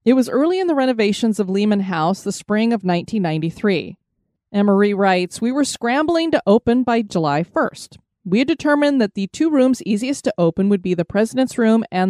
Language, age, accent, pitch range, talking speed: English, 30-49, American, 190-255 Hz, 195 wpm